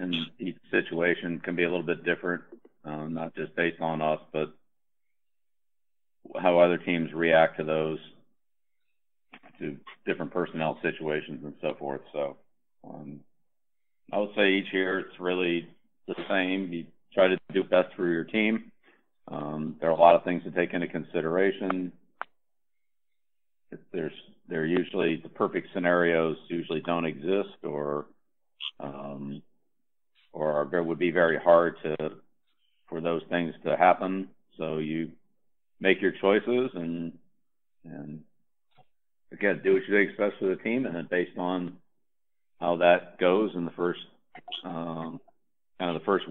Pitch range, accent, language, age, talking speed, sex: 80-90 Hz, American, English, 50-69, 150 wpm, male